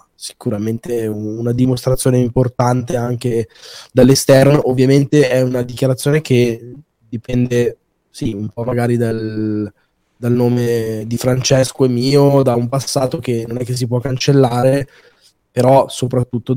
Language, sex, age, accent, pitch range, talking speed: Italian, male, 20-39, native, 115-135 Hz, 125 wpm